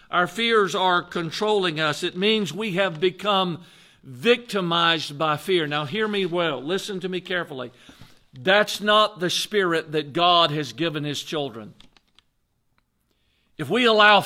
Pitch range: 165-215 Hz